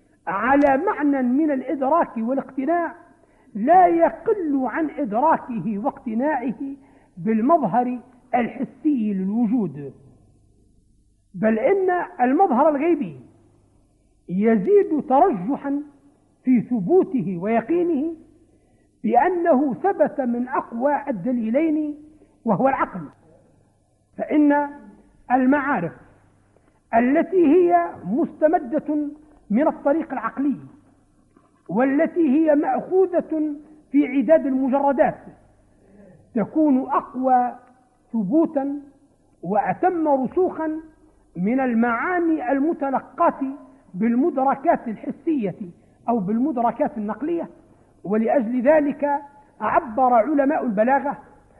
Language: Arabic